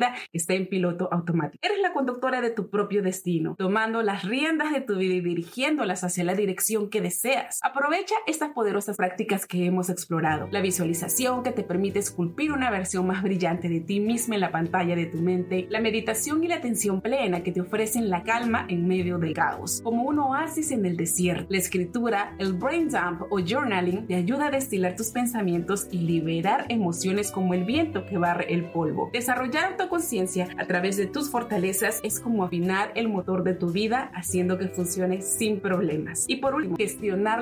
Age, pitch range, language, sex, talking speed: 30-49, 180-235 Hz, Spanish, female, 190 wpm